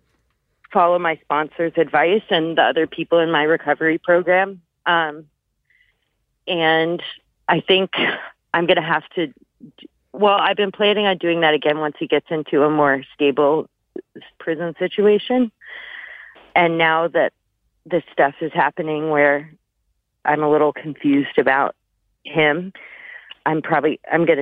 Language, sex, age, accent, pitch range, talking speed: English, female, 30-49, American, 150-175 Hz, 140 wpm